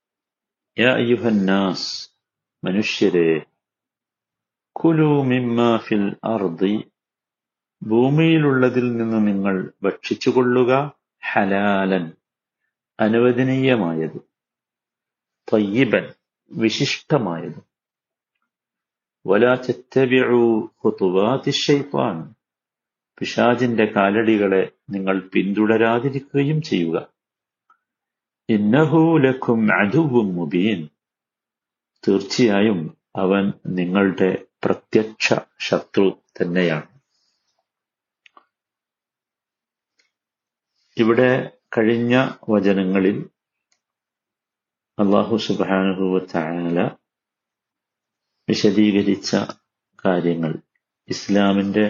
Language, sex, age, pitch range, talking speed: Malayalam, male, 50-69, 95-125 Hz, 60 wpm